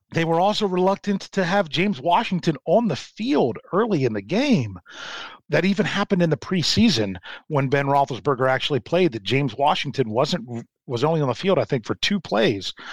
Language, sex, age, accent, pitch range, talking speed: English, male, 40-59, American, 120-160 Hz, 190 wpm